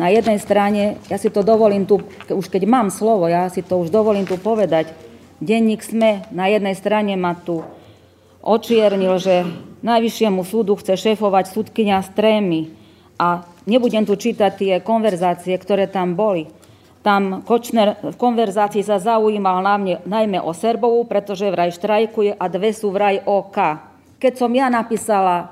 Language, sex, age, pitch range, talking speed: Slovak, female, 40-59, 185-230 Hz, 155 wpm